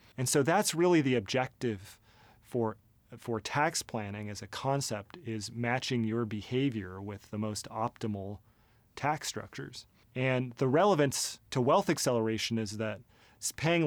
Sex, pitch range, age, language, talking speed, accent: male, 110-130 Hz, 30-49, English, 140 wpm, American